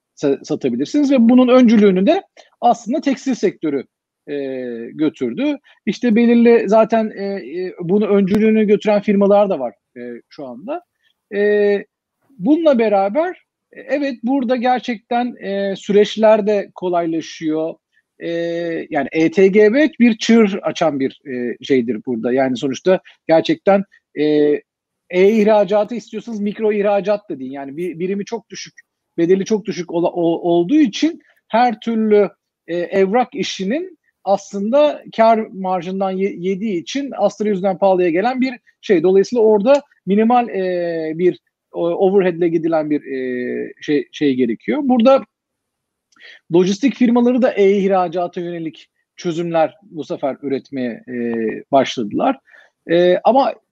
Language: Turkish